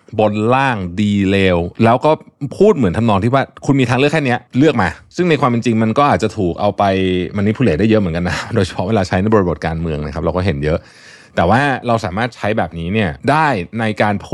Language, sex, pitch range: Thai, male, 90-125 Hz